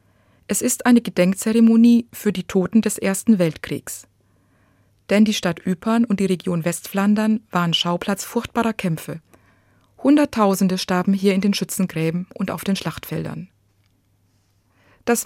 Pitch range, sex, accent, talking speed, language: 155-220 Hz, female, German, 130 wpm, German